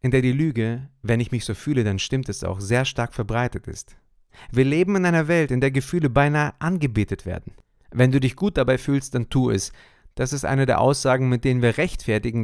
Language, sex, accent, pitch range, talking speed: German, male, German, 115-160 Hz, 220 wpm